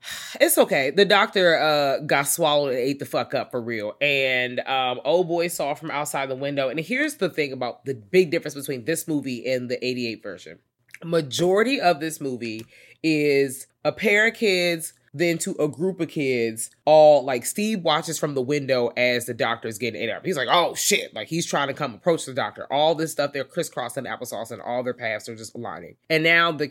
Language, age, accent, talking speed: English, 20-39, American, 215 wpm